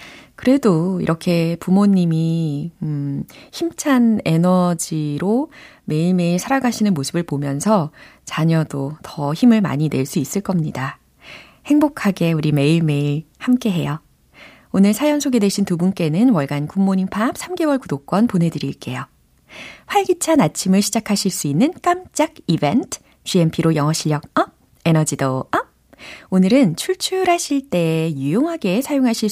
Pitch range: 155-255 Hz